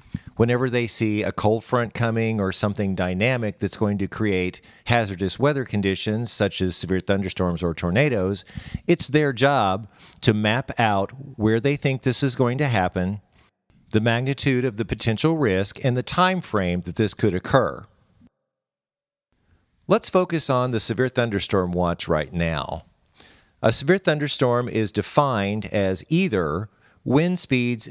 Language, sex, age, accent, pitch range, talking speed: English, male, 50-69, American, 95-130 Hz, 150 wpm